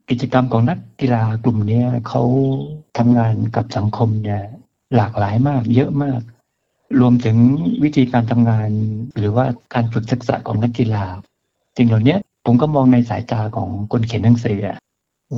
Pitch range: 110-130 Hz